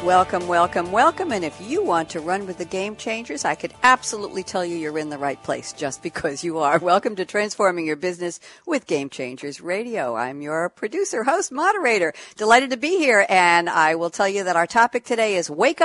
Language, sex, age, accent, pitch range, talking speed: English, female, 60-79, American, 165-240 Hz, 210 wpm